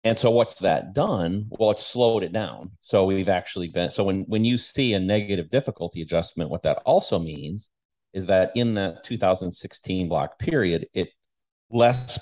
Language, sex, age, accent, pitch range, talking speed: English, male, 40-59, American, 85-110 Hz, 175 wpm